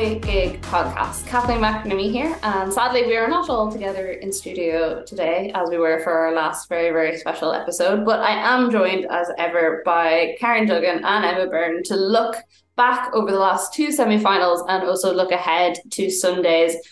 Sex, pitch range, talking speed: female, 165-195 Hz, 185 wpm